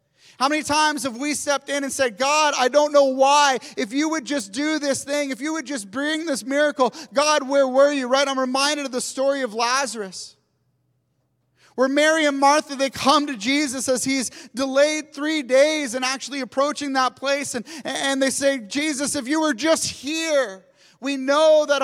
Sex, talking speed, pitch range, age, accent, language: male, 195 wpm, 230-285 Hz, 30-49, American, English